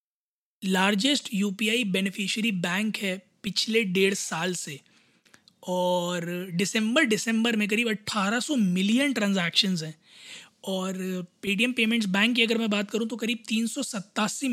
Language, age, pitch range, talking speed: Hindi, 20-39, 195-230 Hz, 155 wpm